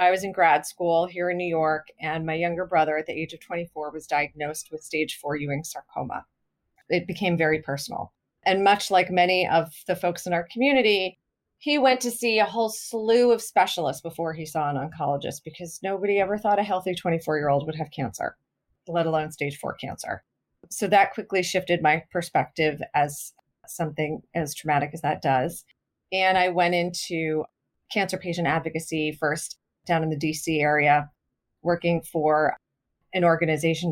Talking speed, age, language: 175 wpm, 30-49, English